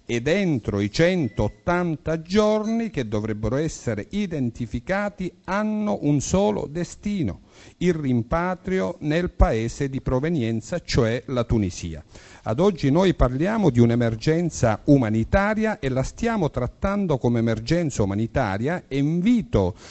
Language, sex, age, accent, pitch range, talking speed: Italian, male, 50-69, native, 115-185 Hz, 115 wpm